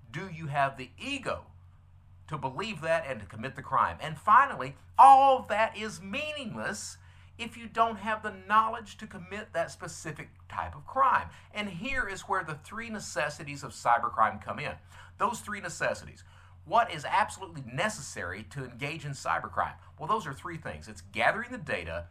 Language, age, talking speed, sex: English, 50-69, 170 wpm, male